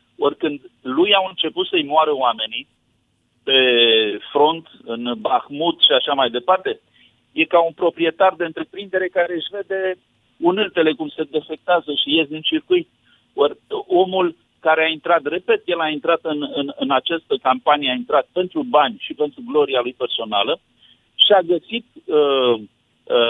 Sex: male